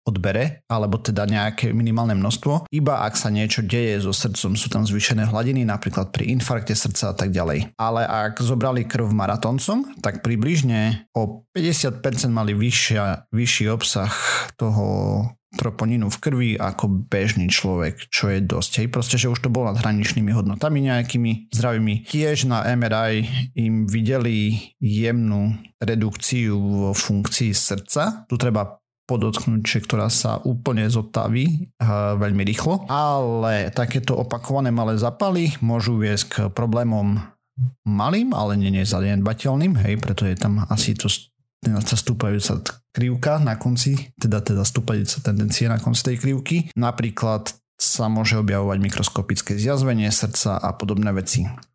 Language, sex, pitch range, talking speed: Slovak, male, 105-125 Hz, 135 wpm